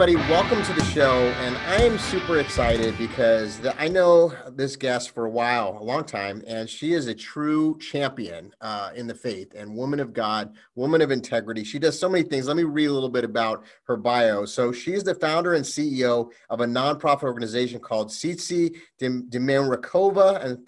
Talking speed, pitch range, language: 195 wpm, 120-155 Hz, English